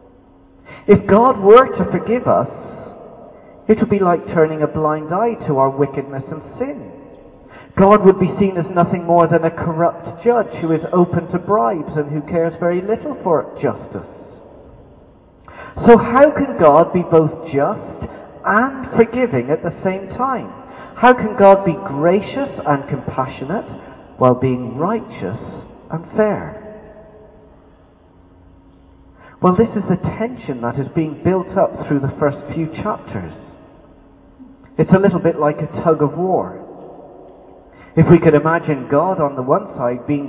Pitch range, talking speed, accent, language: 150-225 Hz, 150 wpm, British, English